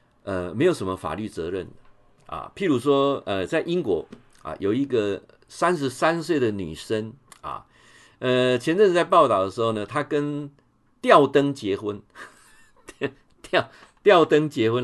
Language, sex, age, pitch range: Chinese, male, 50-69, 115-155 Hz